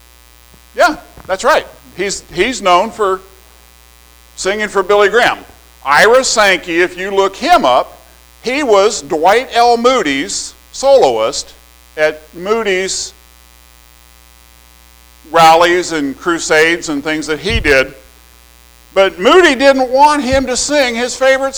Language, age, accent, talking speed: English, 50-69, American, 120 wpm